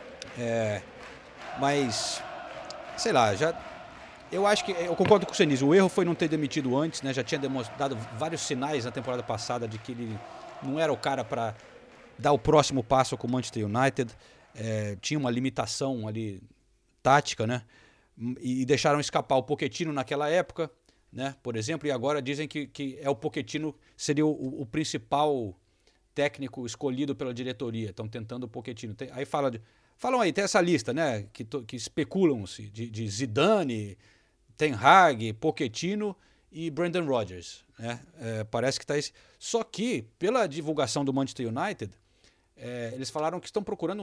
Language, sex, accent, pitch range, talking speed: Portuguese, male, Brazilian, 120-170 Hz, 170 wpm